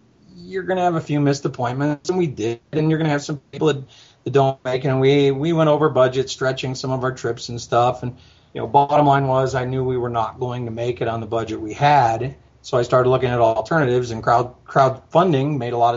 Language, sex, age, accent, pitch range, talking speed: English, male, 40-59, American, 120-145 Hz, 245 wpm